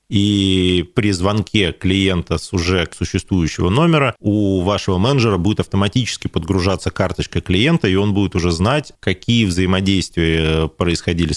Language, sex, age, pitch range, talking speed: Russian, male, 30-49, 85-110 Hz, 125 wpm